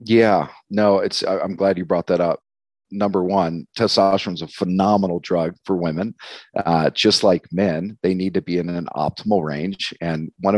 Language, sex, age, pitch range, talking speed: English, male, 40-59, 75-95 Hz, 180 wpm